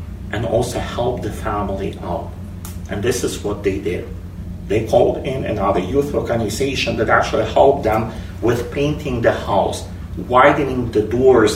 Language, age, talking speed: Ukrainian, 40-59, 150 wpm